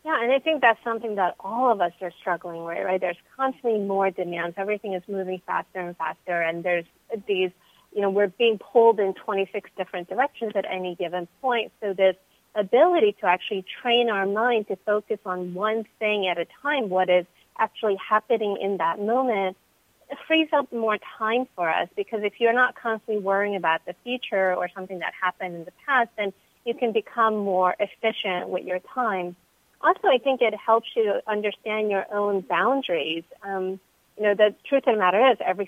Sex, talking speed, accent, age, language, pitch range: female, 190 wpm, American, 30-49, English, 180-225 Hz